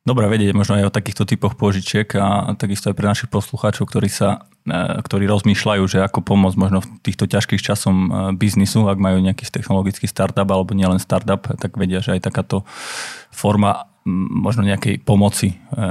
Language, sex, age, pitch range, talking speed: Slovak, male, 20-39, 95-105 Hz, 160 wpm